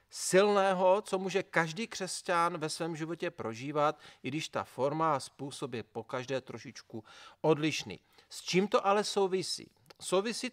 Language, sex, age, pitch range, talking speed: Czech, male, 40-59, 150-190 Hz, 150 wpm